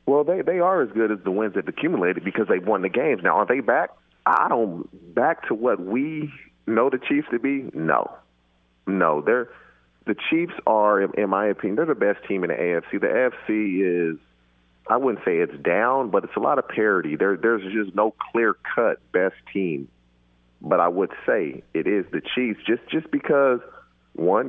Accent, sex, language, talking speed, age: American, male, English, 200 wpm, 40-59